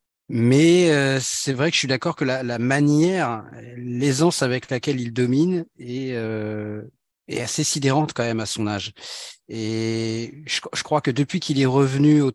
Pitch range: 120-150 Hz